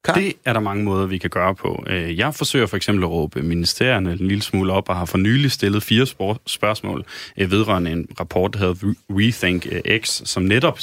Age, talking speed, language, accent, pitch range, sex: 30-49, 200 wpm, Danish, native, 95-120 Hz, male